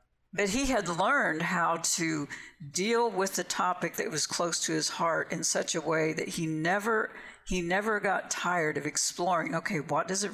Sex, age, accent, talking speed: female, 60-79, American, 190 wpm